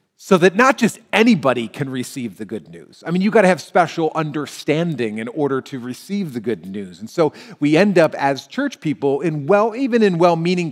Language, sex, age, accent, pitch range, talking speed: English, male, 40-59, American, 120-165 Hz, 215 wpm